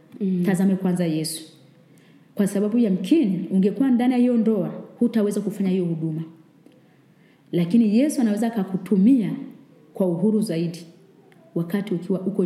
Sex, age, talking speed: female, 30-49, 125 wpm